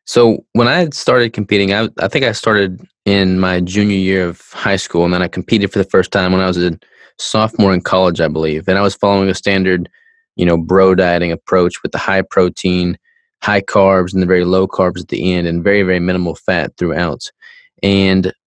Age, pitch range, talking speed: 20-39, 90-100 Hz, 215 wpm